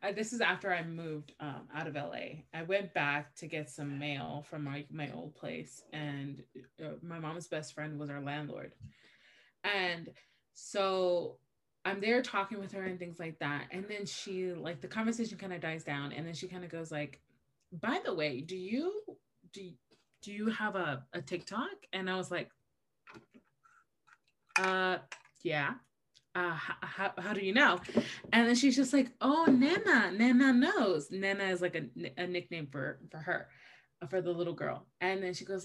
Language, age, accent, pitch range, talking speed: English, 20-39, American, 165-225 Hz, 185 wpm